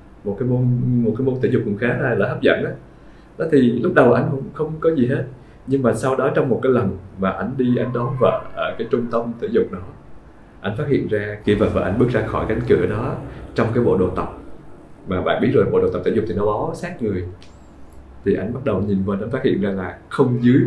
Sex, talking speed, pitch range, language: male, 260 wpm, 95-130 Hz, Vietnamese